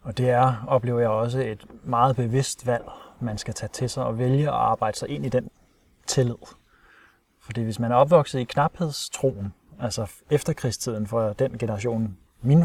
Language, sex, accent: Danish, male, native